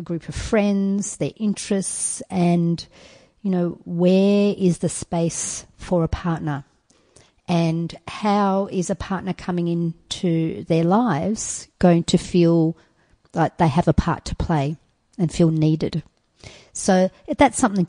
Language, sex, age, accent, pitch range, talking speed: English, female, 50-69, Australian, 175-215 Hz, 140 wpm